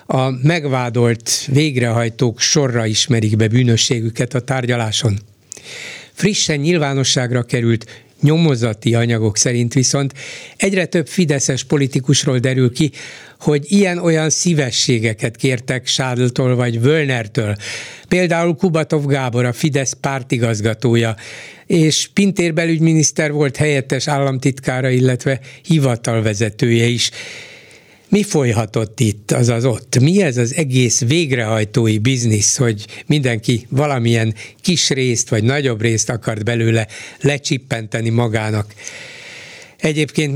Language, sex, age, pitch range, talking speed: Hungarian, male, 60-79, 120-150 Hz, 105 wpm